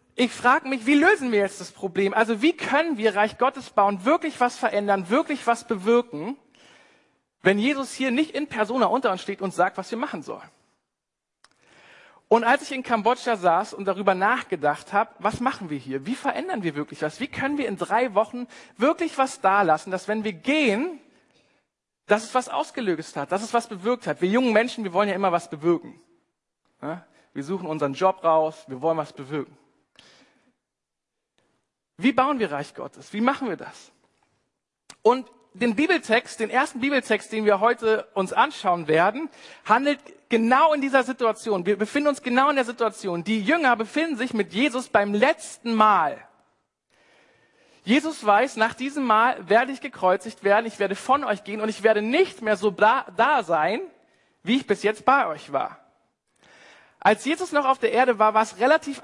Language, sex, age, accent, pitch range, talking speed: German, male, 40-59, German, 200-265 Hz, 180 wpm